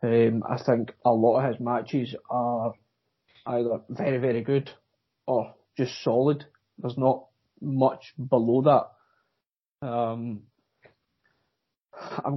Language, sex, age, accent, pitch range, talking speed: English, male, 20-39, British, 120-135 Hz, 110 wpm